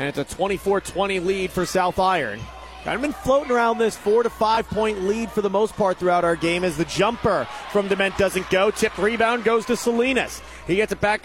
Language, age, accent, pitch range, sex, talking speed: English, 30-49, American, 180-215 Hz, male, 225 wpm